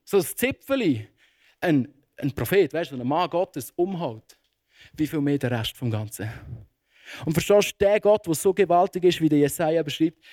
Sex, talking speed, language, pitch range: male, 185 wpm, German, 145-215 Hz